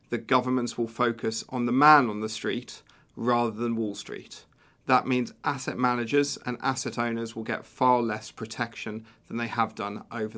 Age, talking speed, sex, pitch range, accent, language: 40-59, 180 wpm, male, 110-130 Hz, British, English